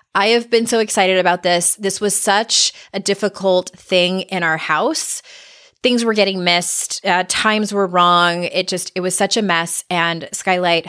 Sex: female